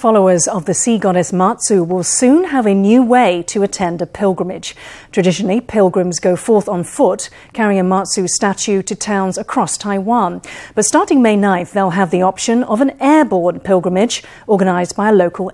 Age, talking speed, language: 40-59, 180 wpm, English